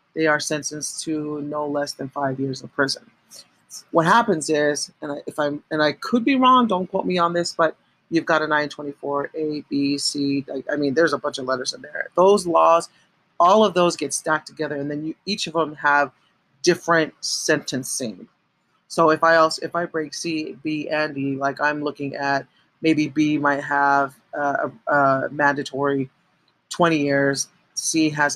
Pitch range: 140-165 Hz